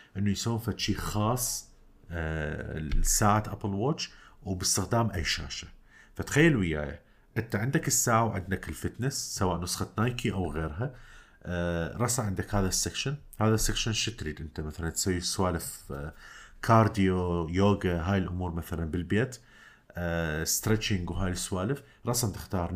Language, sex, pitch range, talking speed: Arabic, male, 85-115 Hz, 130 wpm